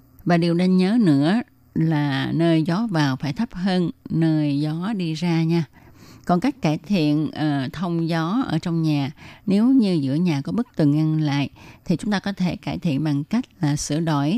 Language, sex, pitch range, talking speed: Vietnamese, female, 150-190 Hz, 195 wpm